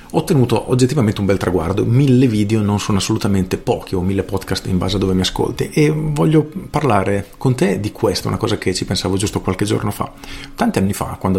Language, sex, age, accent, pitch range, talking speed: Italian, male, 40-59, native, 95-120 Hz, 215 wpm